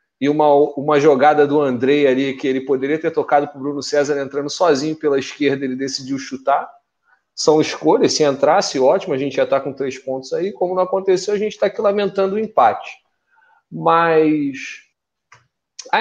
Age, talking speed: 30-49, 180 wpm